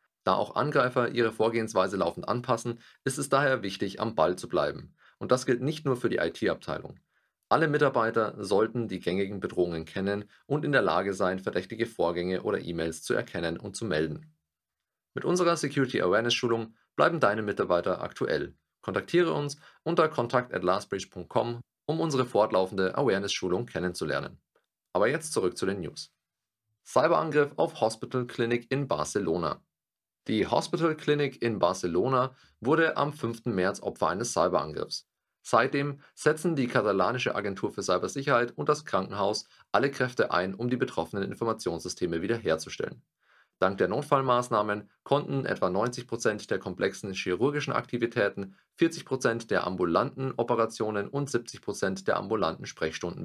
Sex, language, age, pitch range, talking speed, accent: male, German, 30-49, 100-140 Hz, 140 wpm, German